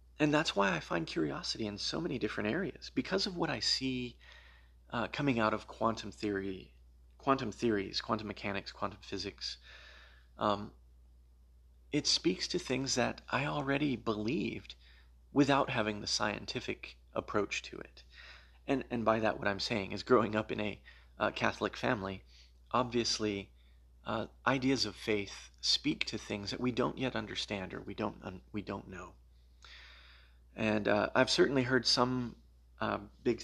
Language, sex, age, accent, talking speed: English, male, 30-49, American, 155 wpm